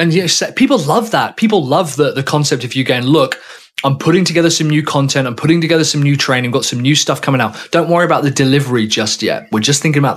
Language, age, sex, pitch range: English, 20-39, male, 125-160 Hz